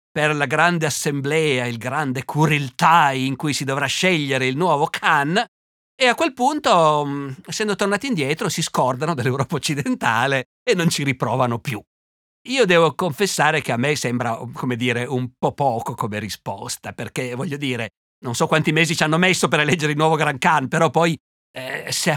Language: Italian